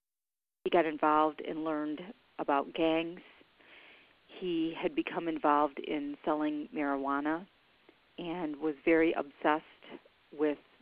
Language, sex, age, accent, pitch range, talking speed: English, female, 50-69, American, 150-175 Hz, 100 wpm